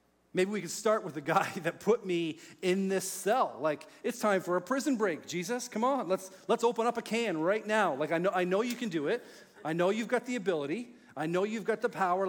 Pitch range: 150-195 Hz